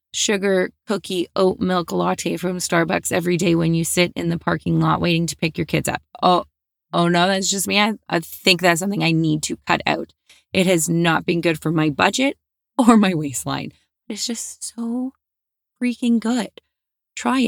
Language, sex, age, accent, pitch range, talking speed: English, female, 20-39, American, 165-220 Hz, 190 wpm